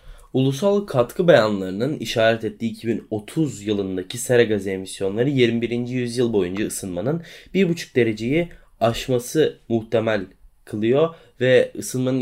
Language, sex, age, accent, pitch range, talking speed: Turkish, male, 20-39, native, 110-135 Hz, 105 wpm